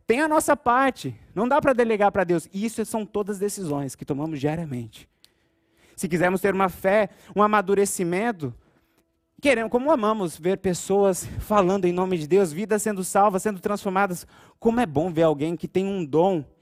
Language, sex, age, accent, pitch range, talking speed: Portuguese, male, 30-49, Brazilian, 190-235 Hz, 175 wpm